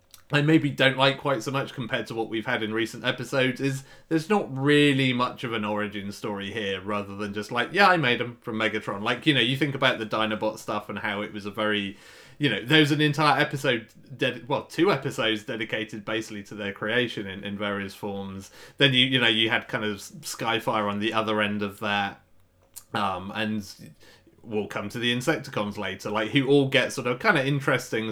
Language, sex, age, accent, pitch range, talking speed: English, male, 30-49, British, 105-130 Hz, 220 wpm